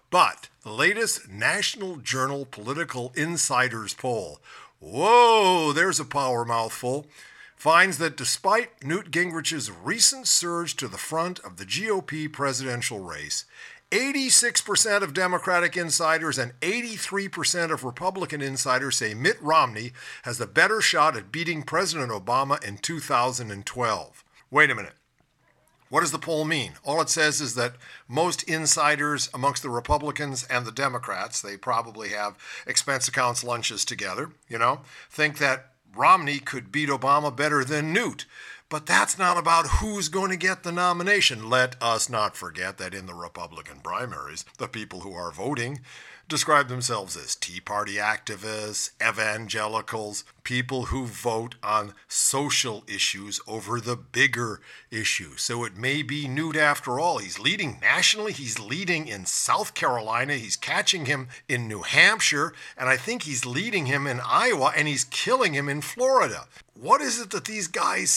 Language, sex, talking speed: English, male, 150 wpm